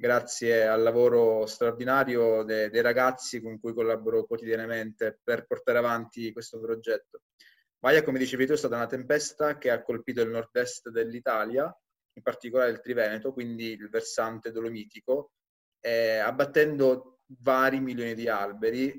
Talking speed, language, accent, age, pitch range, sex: 135 wpm, Italian, native, 20-39, 115-140 Hz, male